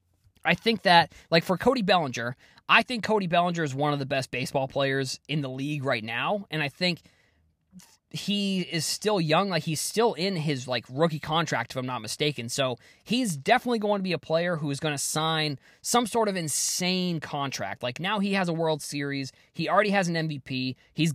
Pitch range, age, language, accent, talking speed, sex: 135-190 Hz, 20-39, English, American, 205 wpm, male